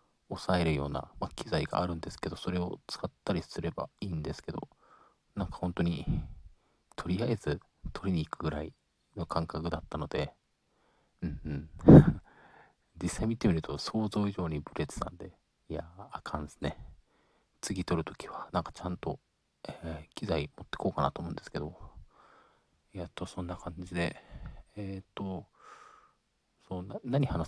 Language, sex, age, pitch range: Japanese, male, 40-59, 80-100 Hz